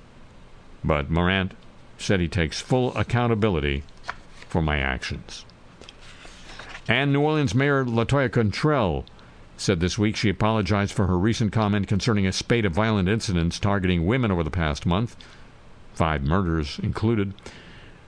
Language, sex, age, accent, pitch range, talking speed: English, male, 60-79, American, 85-115 Hz, 135 wpm